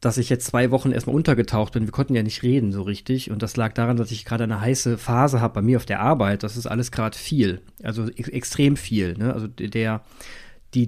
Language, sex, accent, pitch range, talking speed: German, male, German, 110-130 Hz, 245 wpm